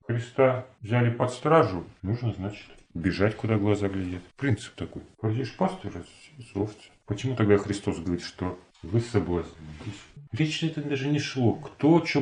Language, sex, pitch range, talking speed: Russian, male, 100-140 Hz, 135 wpm